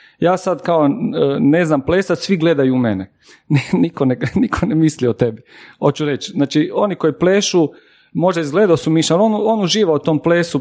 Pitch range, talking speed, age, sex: 145-180 Hz, 185 wpm, 40-59, male